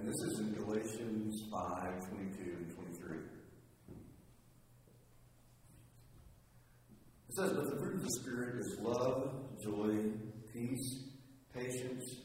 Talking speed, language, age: 110 wpm, English, 60-79